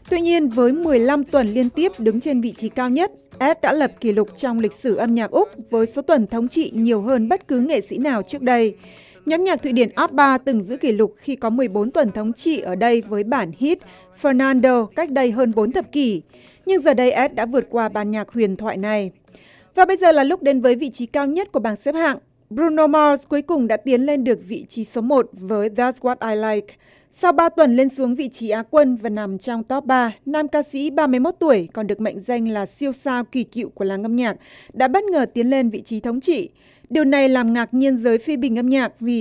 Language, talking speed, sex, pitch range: Vietnamese, 250 wpm, female, 225-285 Hz